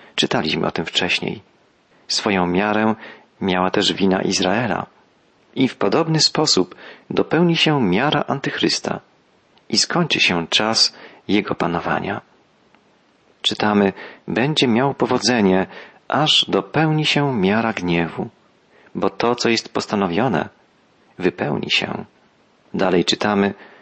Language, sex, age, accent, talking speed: Polish, male, 40-59, native, 105 wpm